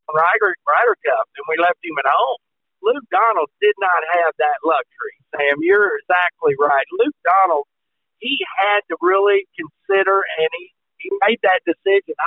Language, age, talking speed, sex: English, 50-69, 160 wpm, male